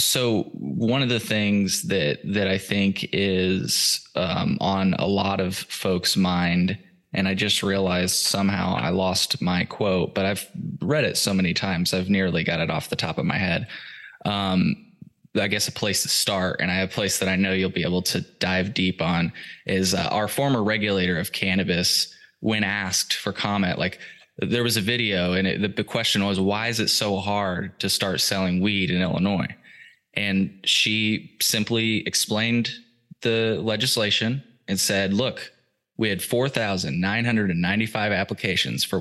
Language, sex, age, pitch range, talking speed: English, male, 20-39, 95-110 Hz, 170 wpm